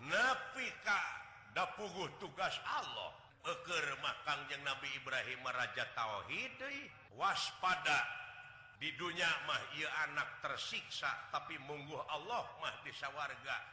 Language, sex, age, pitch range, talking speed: Indonesian, male, 50-69, 130-170 Hz, 105 wpm